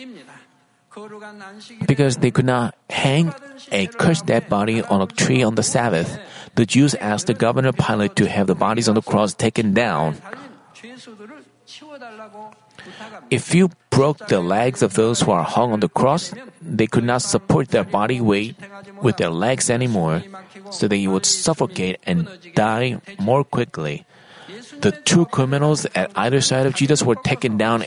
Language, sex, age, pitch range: Korean, male, 30-49, 120-190 Hz